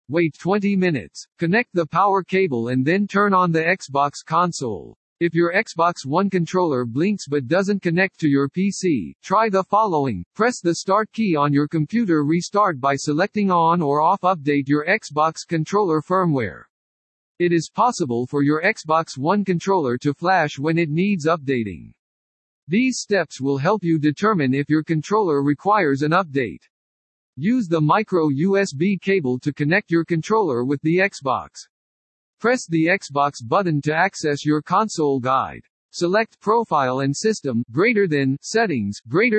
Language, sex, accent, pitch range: English, male, American, 140-190 Hz